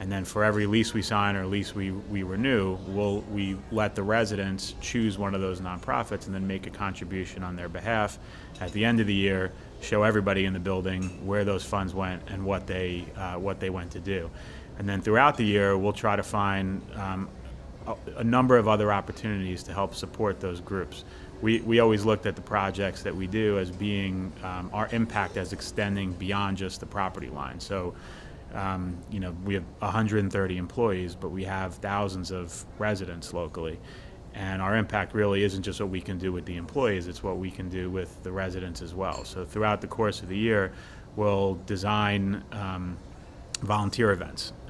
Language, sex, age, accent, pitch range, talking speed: English, male, 30-49, American, 95-105 Hz, 195 wpm